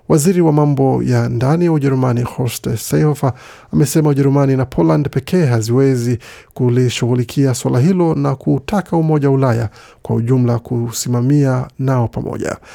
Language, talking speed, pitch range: Swahili, 125 wpm, 125-150 Hz